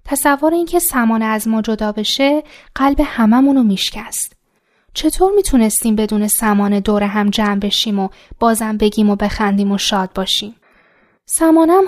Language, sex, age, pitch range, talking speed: Persian, female, 10-29, 200-275 Hz, 140 wpm